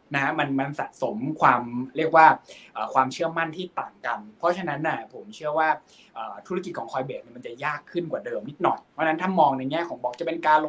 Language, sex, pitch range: Thai, male, 130-165 Hz